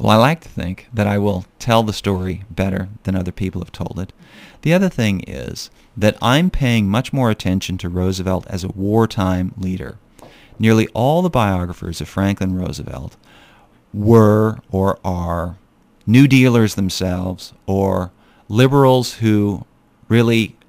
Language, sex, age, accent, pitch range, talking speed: English, male, 40-59, American, 90-115 Hz, 150 wpm